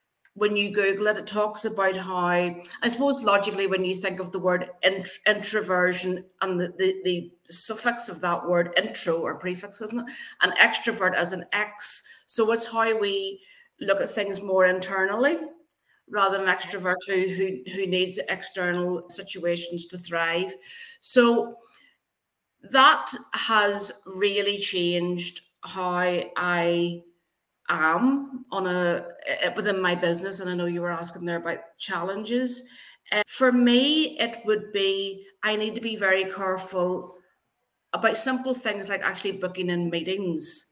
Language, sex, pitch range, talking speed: English, female, 175-210 Hz, 145 wpm